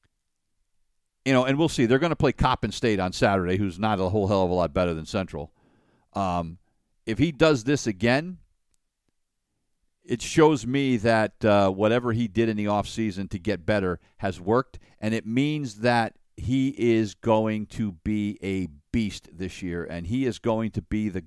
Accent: American